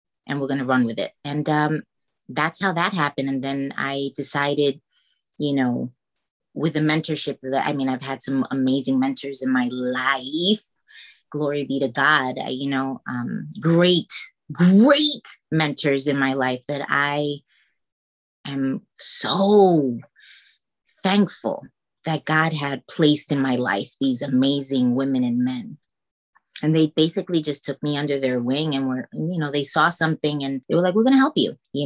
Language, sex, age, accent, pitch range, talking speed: English, female, 30-49, American, 135-170 Hz, 170 wpm